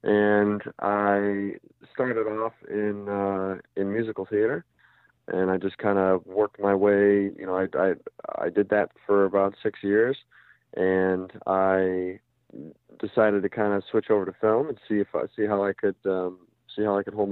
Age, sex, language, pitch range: 40-59, male, English, 95-105 Hz